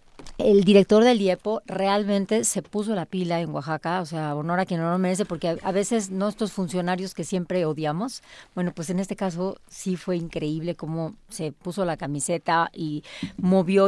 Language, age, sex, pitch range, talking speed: Spanish, 40-59, female, 170-210 Hz, 185 wpm